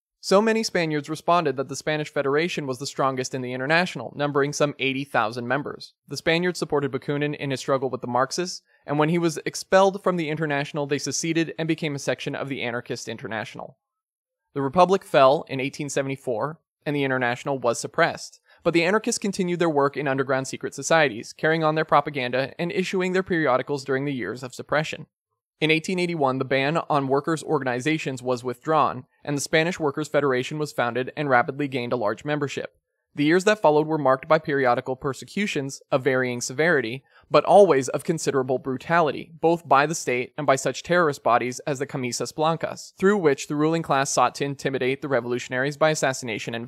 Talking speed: 185 wpm